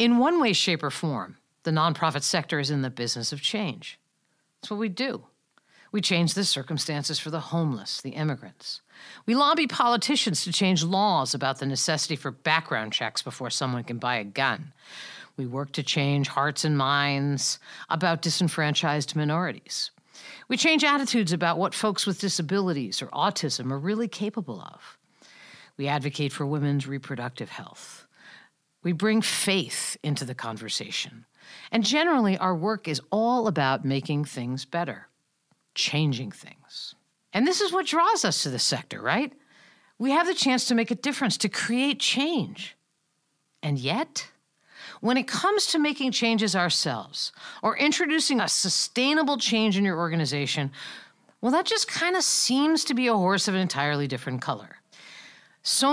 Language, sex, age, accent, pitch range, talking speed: English, female, 50-69, American, 145-235 Hz, 160 wpm